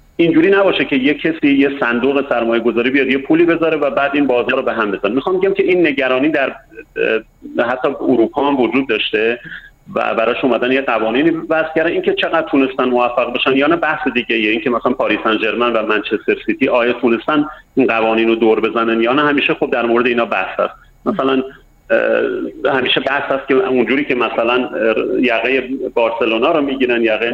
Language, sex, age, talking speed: Persian, male, 40-59, 180 wpm